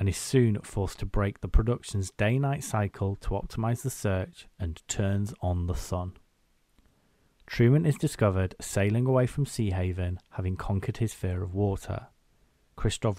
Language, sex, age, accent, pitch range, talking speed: English, male, 30-49, British, 90-115 Hz, 150 wpm